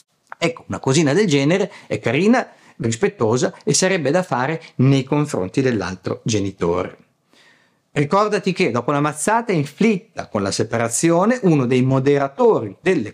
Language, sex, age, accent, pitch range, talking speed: Italian, male, 50-69, native, 110-160 Hz, 130 wpm